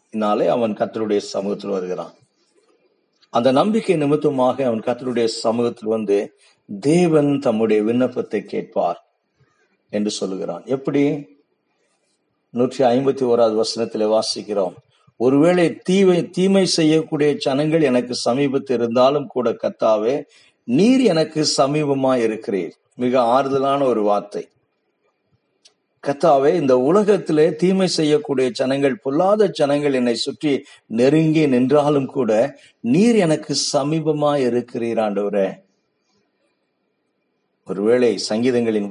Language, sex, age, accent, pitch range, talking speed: Tamil, male, 50-69, native, 115-150 Hz, 80 wpm